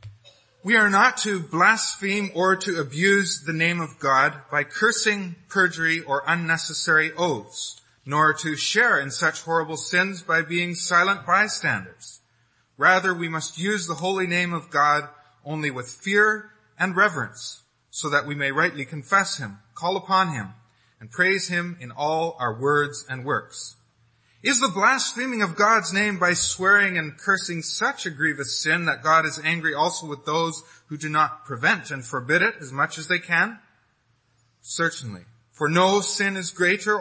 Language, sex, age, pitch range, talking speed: English, male, 30-49, 140-185 Hz, 165 wpm